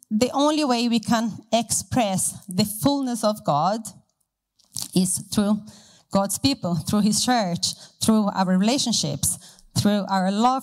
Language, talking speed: English, 130 wpm